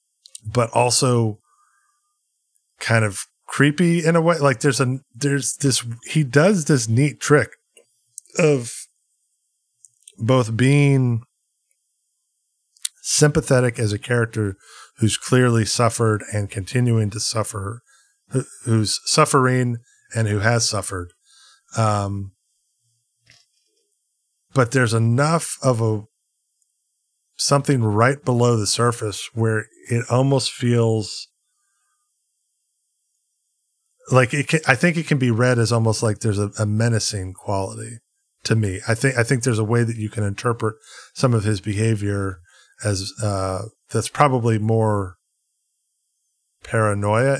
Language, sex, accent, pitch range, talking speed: English, male, American, 110-135 Hz, 120 wpm